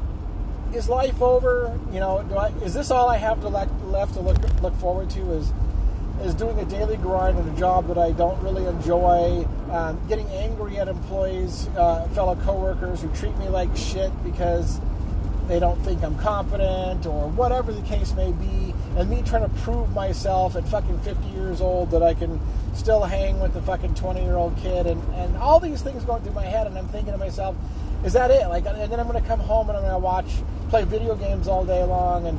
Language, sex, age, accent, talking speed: English, male, 30-49, American, 215 wpm